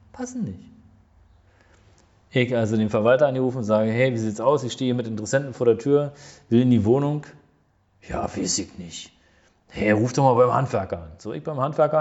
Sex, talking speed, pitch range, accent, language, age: male, 205 wpm, 115-165 Hz, German, German, 40-59